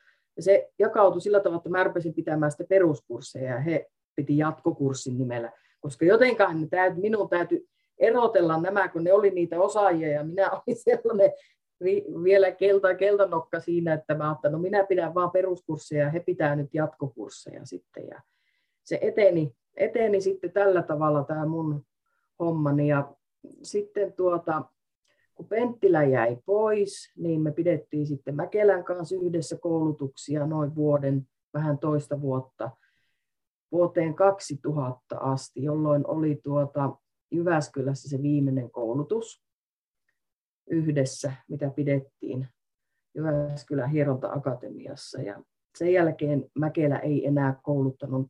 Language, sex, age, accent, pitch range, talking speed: Finnish, female, 30-49, native, 140-185 Hz, 125 wpm